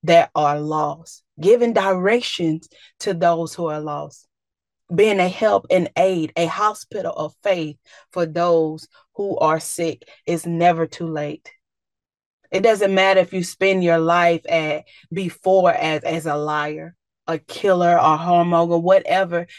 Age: 30-49